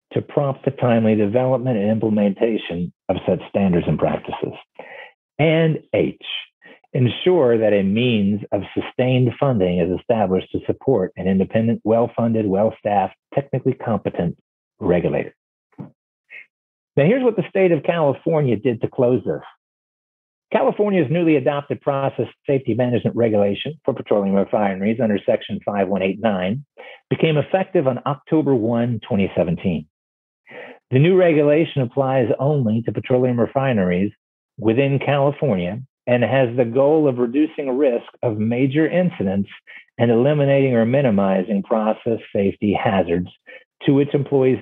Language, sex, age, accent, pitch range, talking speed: English, male, 50-69, American, 110-140 Hz, 125 wpm